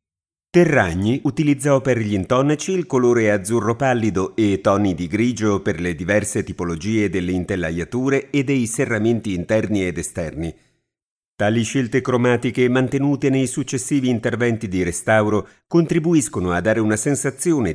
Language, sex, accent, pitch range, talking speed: Italian, male, native, 95-130 Hz, 130 wpm